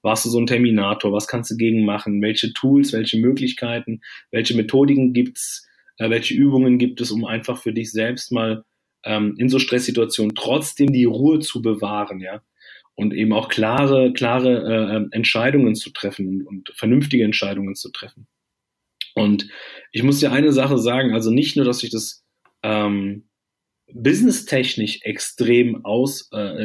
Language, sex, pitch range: German, male, 110-135 Hz